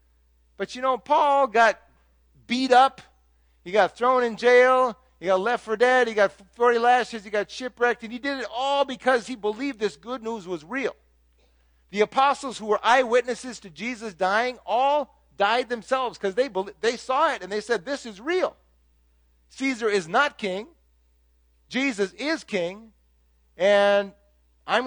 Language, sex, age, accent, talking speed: English, male, 50-69, American, 165 wpm